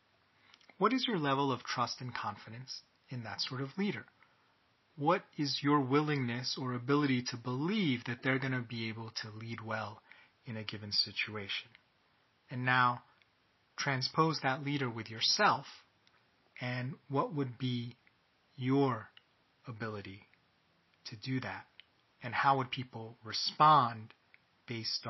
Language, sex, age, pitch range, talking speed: English, male, 30-49, 120-145 Hz, 135 wpm